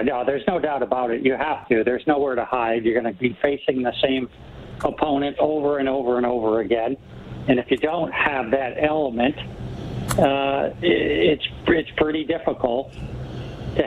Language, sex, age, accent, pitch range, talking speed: English, male, 60-79, American, 125-150 Hz, 175 wpm